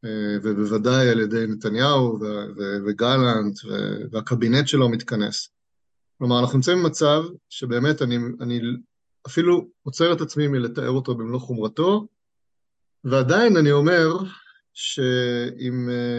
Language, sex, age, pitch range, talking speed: Hebrew, male, 30-49, 115-145 Hz, 110 wpm